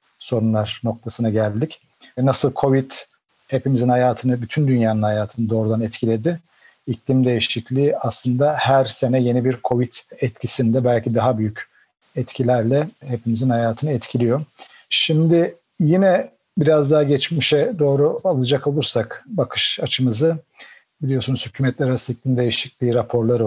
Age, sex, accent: 50-69, male, native